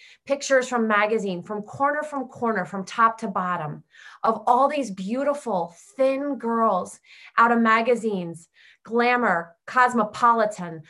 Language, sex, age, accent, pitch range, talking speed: English, female, 30-49, American, 185-240 Hz, 120 wpm